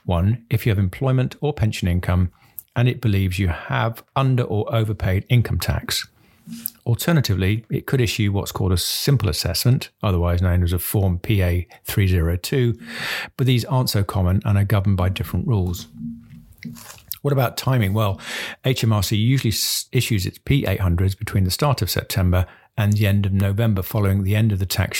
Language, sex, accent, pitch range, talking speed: English, male, British, 95-120 Hz, 165 wpm